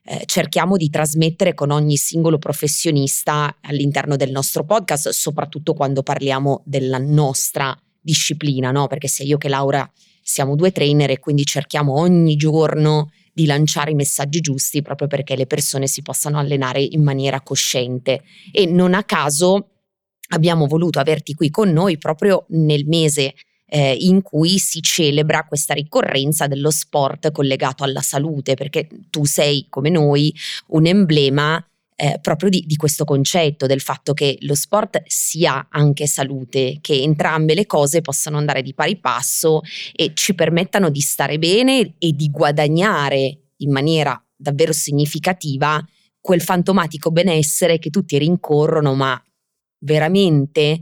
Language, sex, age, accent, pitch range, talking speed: Italian, female, 20-39, native, 140-165 Hz, 145 wpm